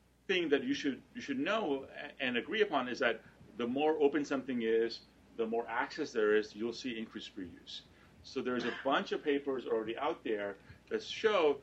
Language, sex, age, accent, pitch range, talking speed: English, male, 40-59, American, 105-135 Hz, 190 wpm